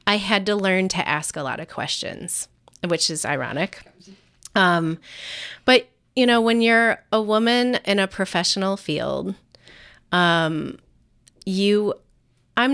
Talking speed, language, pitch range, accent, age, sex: 130 wpm, English, 165-205 Hz, American, 30-49, female